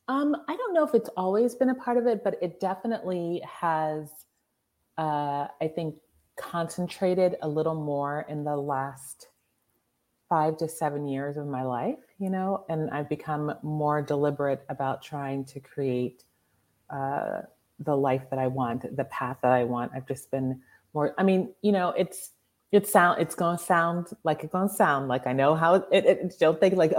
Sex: female